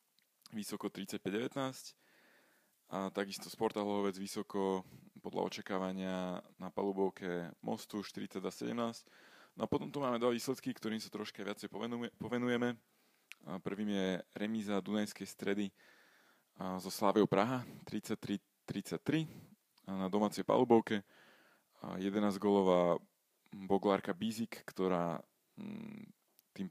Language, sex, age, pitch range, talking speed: Slovak, male, 20-39, 95-115 Hz, 110 wpm